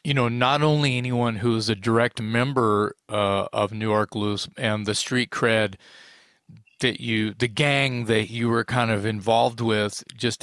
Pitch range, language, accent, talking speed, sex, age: 110-135 Hz, English, American, 180 wpm, male, 40-59